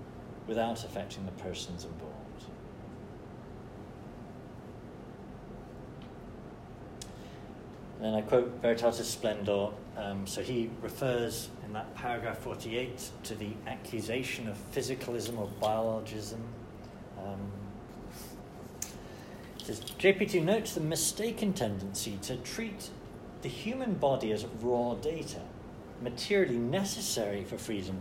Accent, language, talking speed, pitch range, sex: British, English, 95 wpm, 105-145 Hz, male